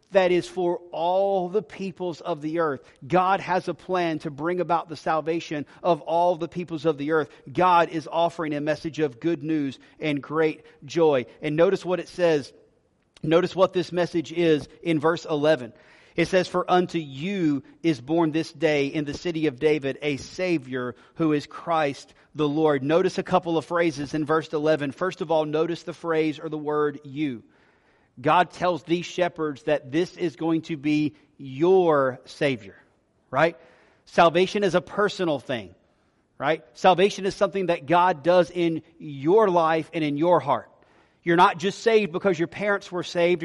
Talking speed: 180 wpm